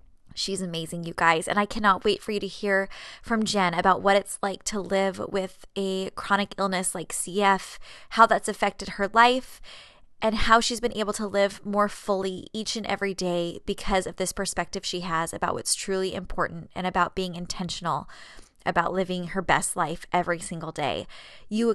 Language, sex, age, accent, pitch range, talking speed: English, female, 20-39, American, 180-220 Hz, 185 wpm